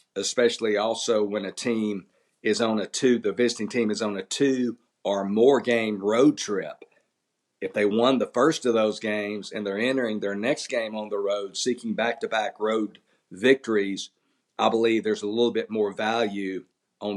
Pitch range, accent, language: 105-120 Hz, American, English